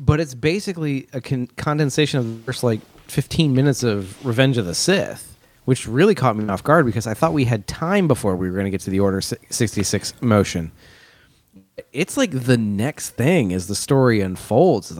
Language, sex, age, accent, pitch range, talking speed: English, male, 30-49, American, 105-145 Hz, 195 wpm